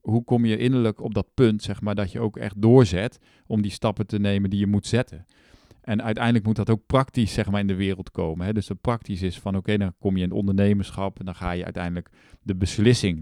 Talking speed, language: 250 wpm, Dutch